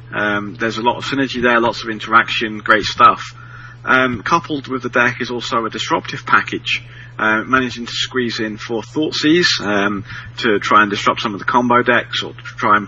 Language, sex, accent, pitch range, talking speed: English, male, British, 115-135 Hz, 195 wpm